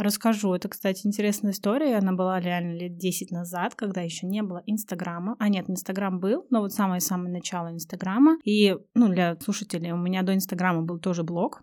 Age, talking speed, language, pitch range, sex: 20-39, 185 wpm, Russian, 180-220 Hz, female